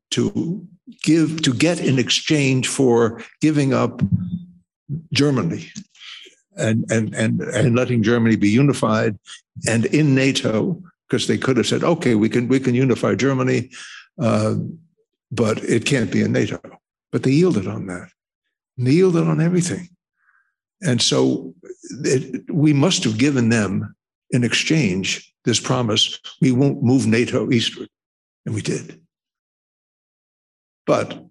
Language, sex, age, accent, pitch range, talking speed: English, male, 60-79, American, 115-160 Hz, 135 wpm